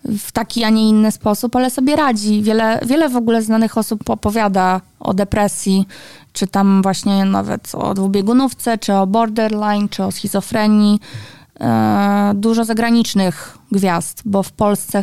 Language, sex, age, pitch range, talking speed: Polish, female, 20-39, 195-230 Hz, 145 wpm